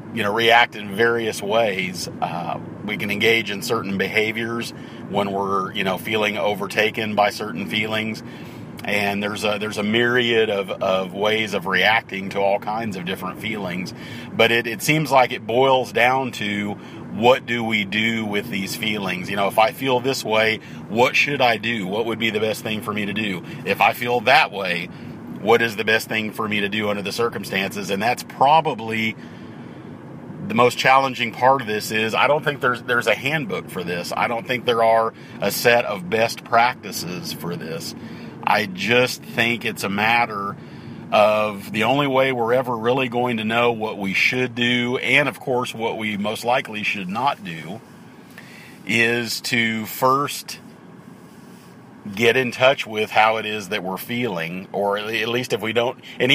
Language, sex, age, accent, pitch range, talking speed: English, male, 40-59, American, 105-120 Hz, 185 wpm